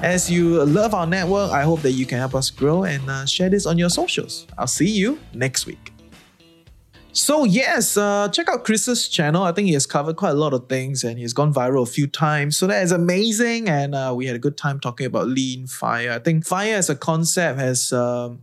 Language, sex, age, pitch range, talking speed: English, male, 20-39, 130-175 Hz, 235 wpm